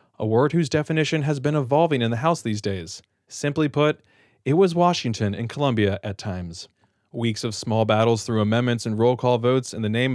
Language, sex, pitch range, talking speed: English, male, 115-150 Hz, 200 wpm